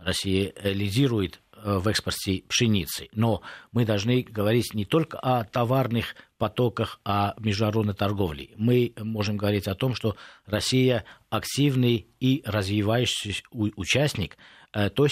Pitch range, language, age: 90-110 Hz, Russian, 50-69